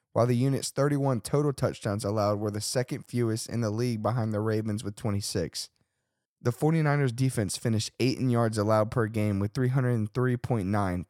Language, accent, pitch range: English, American, 105-130 Hz